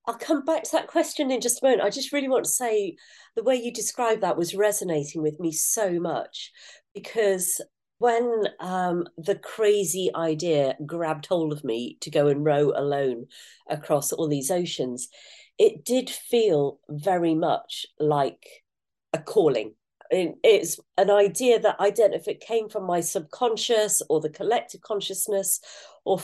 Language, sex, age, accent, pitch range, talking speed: English, female, 40-59, British, 150-220 Hz, 165 wpm